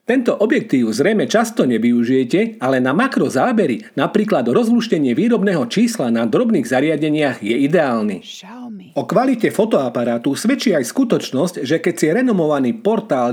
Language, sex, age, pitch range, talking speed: Slovak, male, 40-59, 140-225 Hz, 130 wpm